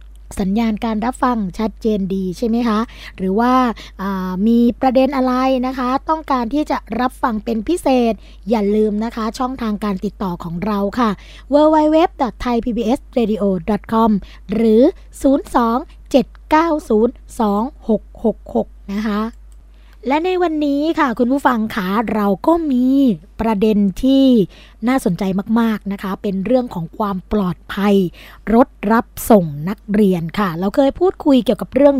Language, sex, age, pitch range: Thai, female, 20-39, 195-250 Hz